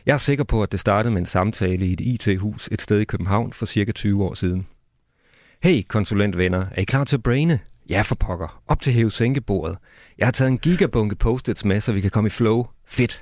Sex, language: male, Danish